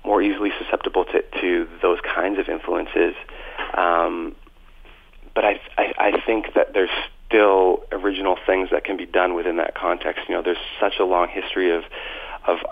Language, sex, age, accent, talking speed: English, male, 40-59, American, 170 wpm